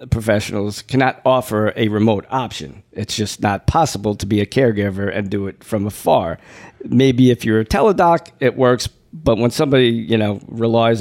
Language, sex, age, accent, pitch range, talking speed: English, male, 50-69, American, 110-130 Hz, 175 wpm